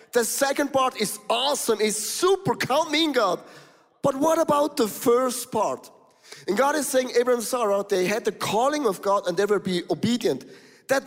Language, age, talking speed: English, 30-49, 195 wpm